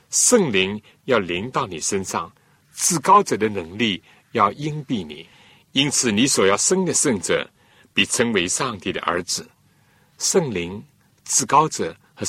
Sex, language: male, Chinese